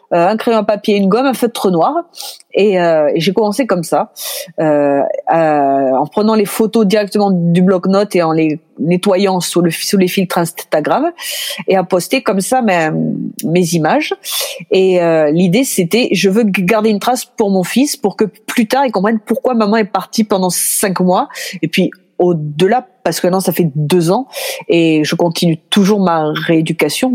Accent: French